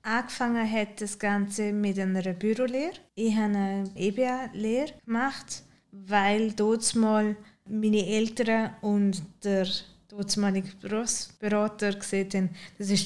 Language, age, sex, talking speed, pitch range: German, 20-39, female, 120 wpm, 190-220 Hz